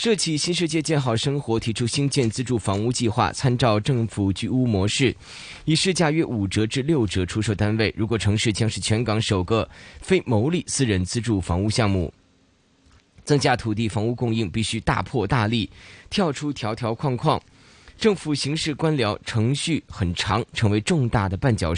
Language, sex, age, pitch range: Chinese, male, 20-39, 95-140 Hz